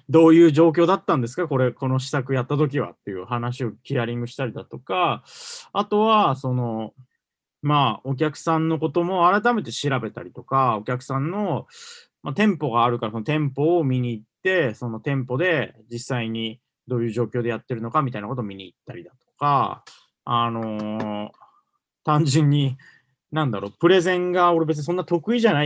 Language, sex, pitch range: Japanese, male, 115-160 Hz